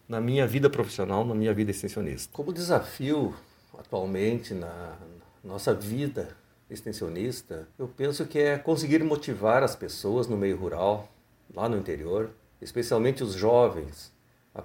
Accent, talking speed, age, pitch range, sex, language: Brazilian, 135 wpm, 60-79, 105-140 Hz, male, Portuguese